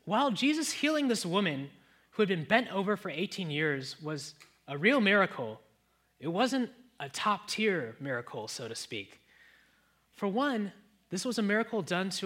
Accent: American